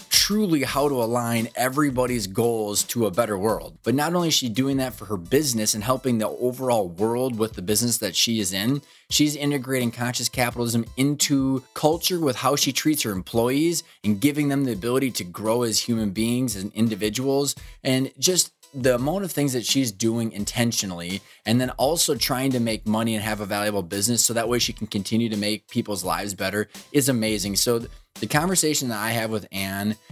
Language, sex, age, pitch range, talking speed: English, male, 20-39, 110-135 Hz, 195 wpm